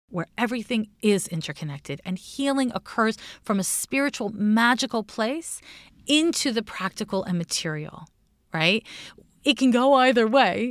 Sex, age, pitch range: female, 30-49, 185-240 Hz